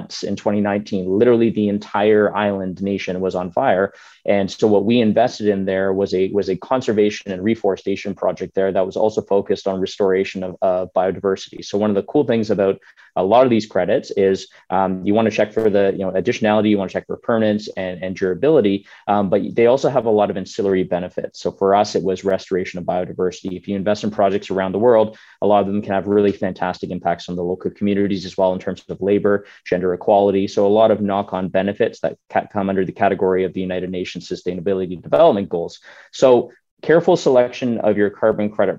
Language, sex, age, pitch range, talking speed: English, male, 20-39, 95-105 Hz, 215 wpm